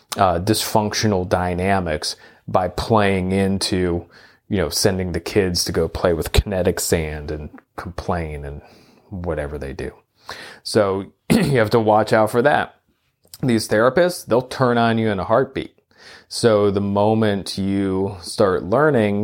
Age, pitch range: 30-49, 90-110 Hz